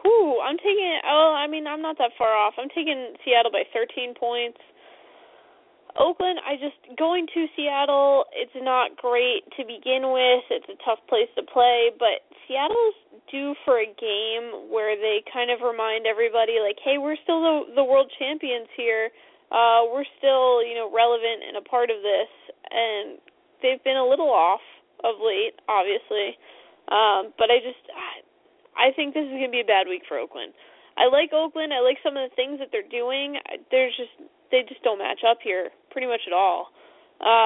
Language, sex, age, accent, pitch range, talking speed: English, female, 10-29, American, 230-295 Hz, 185 wpm